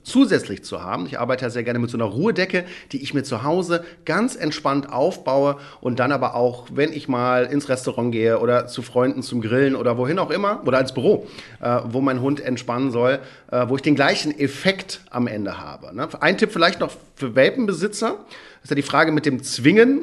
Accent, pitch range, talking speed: German, 125-160 Hz, 210 wpm